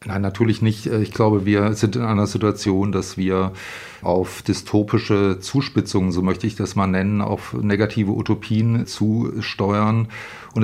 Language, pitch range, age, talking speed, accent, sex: German, 100-110 Hz, 40-59, 145 wpm, German, male